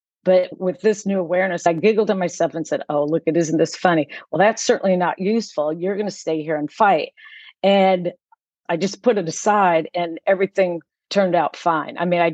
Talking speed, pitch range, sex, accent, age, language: 210 wpm, 165-195 Hz, female, American, 50-69, English